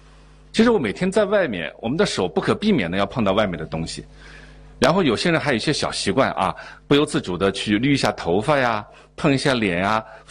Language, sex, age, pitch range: Chinese, male, 50-69, 130-195 Hz